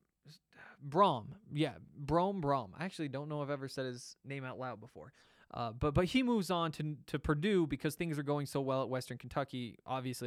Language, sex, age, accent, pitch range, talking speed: English, male, 20-39, American, 130-160 Hz, 210 wpm